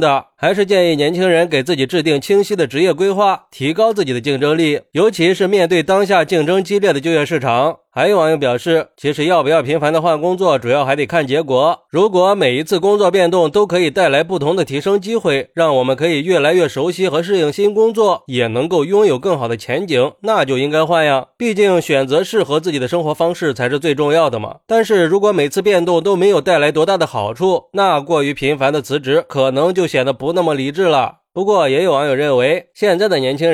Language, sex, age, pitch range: Chinese, male, 20-39, 145-190 Hz